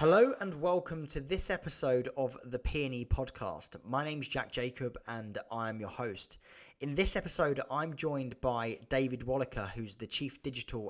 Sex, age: male, 20-39